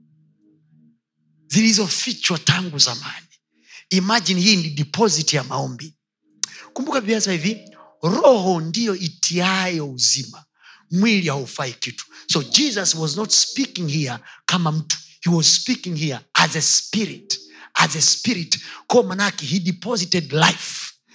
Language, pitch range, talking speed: Swahili, 140-200 Hz, 120 wpm